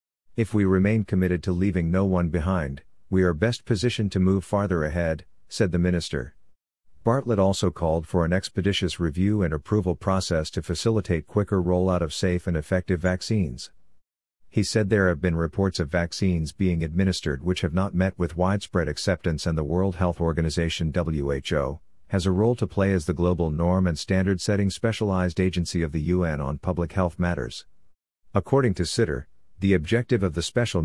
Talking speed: 175 wpm